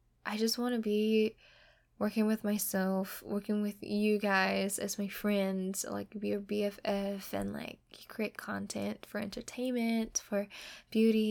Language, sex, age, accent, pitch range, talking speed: English, female, 10-29, American, 200-220 Hz, 145 wpm